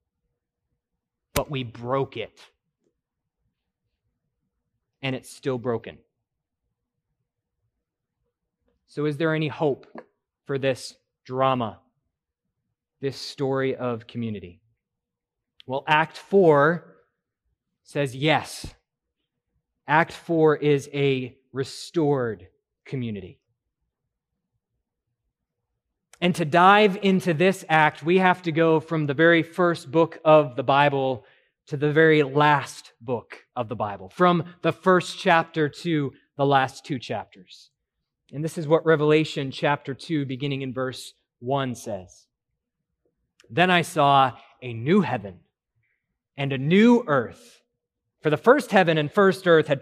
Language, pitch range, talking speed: English, 130-165 Hz, 115 wpm